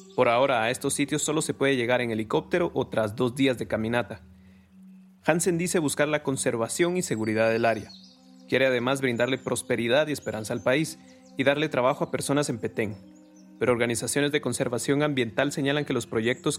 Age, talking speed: 30-49, 180 wpm